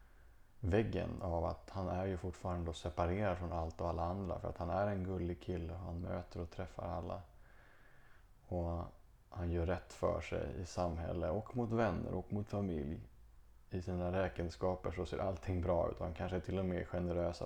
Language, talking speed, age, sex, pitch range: English, 190 wpm, 30-49, male, 85-100 Hz